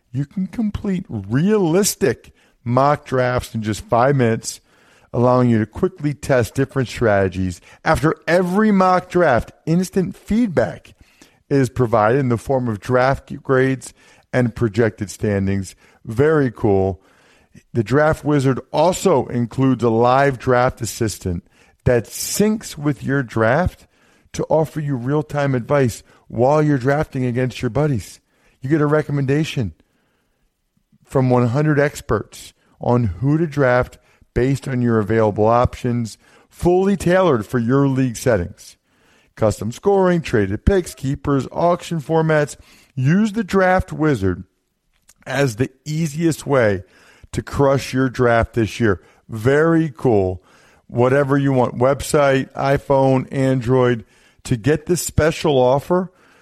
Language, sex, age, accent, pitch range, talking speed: English, male, 50-69, American, 115-150 Hz, 125 wpm